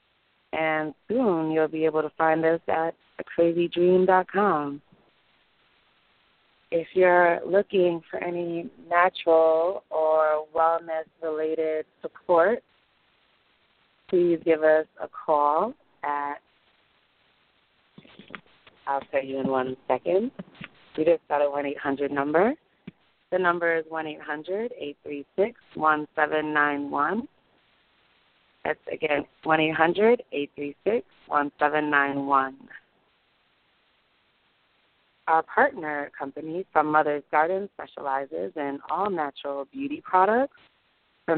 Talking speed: 95 wpm